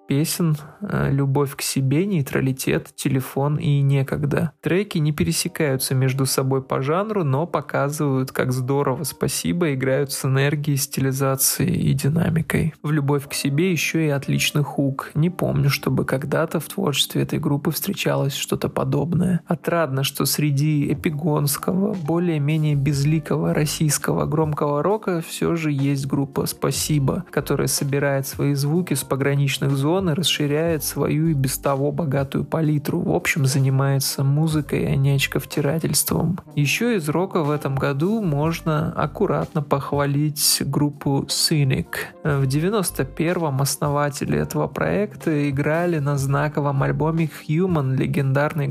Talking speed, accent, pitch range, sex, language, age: 125 wpm, native, 140-165 Hz, male, Russian, 20-39